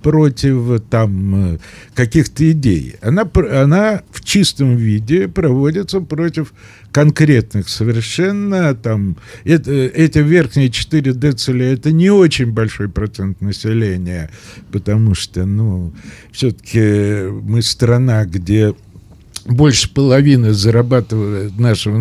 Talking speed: 95 wpm